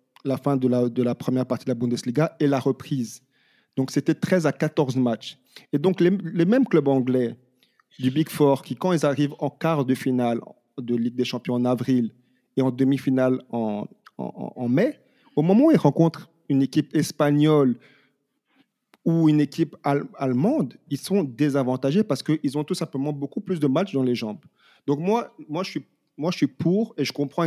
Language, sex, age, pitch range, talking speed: French, male, 40-59, 130-160 Hz, 200 wpm